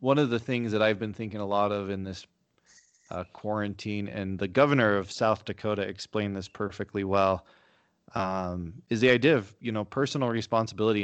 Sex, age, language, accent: male, 20-39, English, American